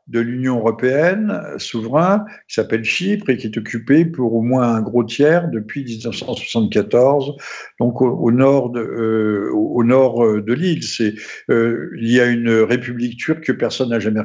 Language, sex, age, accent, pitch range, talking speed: French, male, 60-79, French, 115-140 Hz, 170 wpm